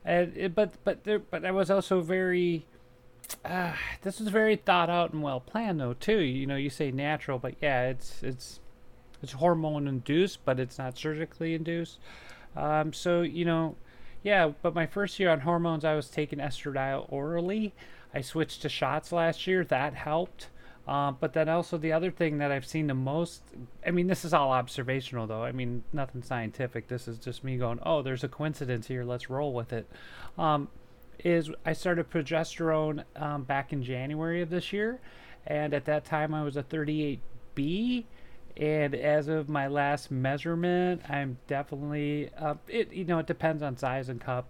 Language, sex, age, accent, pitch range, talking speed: English, male, 30-49, American, 130-170 Hz, 185 wpm